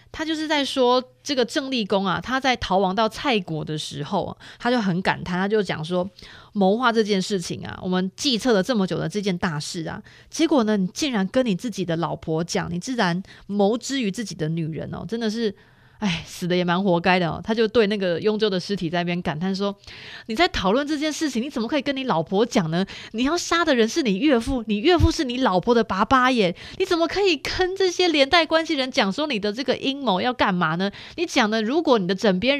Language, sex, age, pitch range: Chinese, female, 20-39, 180-260 Hz